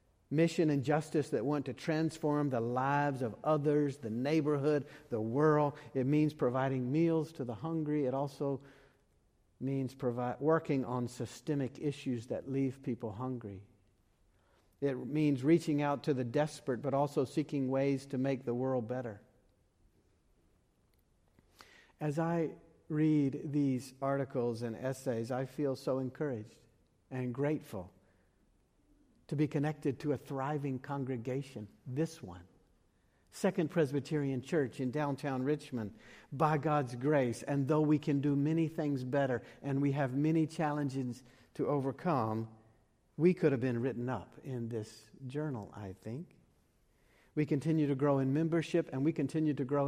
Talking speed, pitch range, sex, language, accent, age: 140 wpm, 120-150 Hz, male, English, American, 50-69